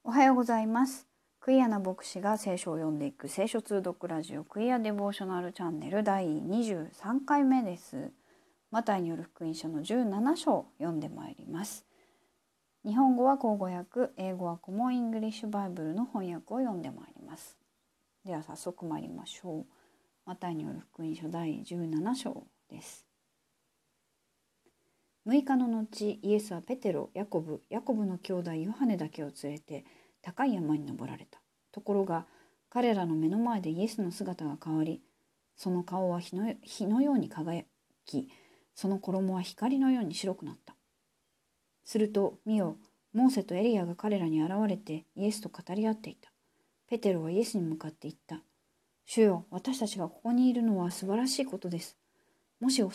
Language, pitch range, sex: Japanese, 175-235 Hz, female